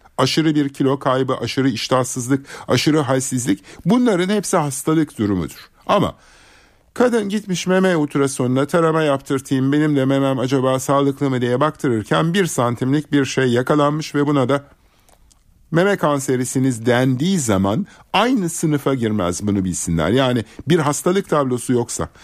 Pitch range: 130-165 Hz